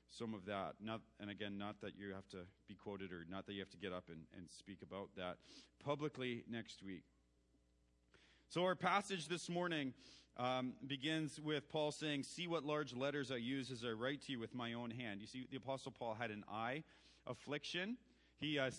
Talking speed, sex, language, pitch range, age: 210 wpm, male, English, 120-150 Hz, 40-59